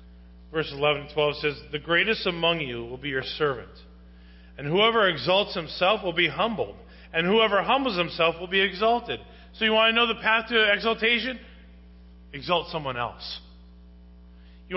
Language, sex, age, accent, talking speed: English, male, 40-59, American, 165 wpm